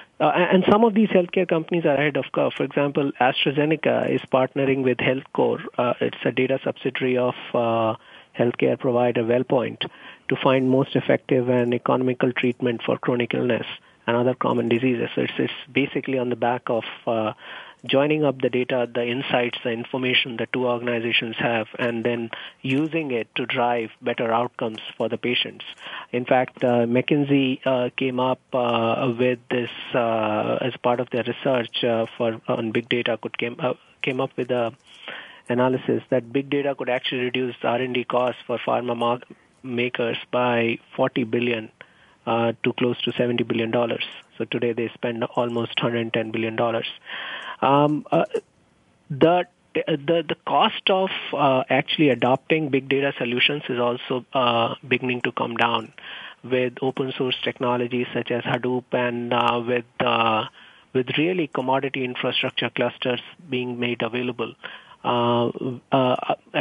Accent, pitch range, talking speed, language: Indian, 120-135 Hz, 155 wpm, English